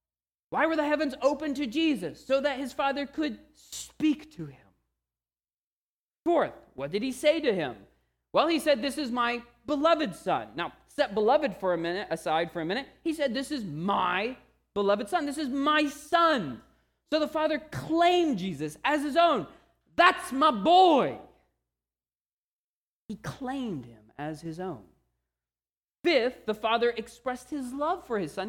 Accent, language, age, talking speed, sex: American, English, 30-49, 160 wpm, male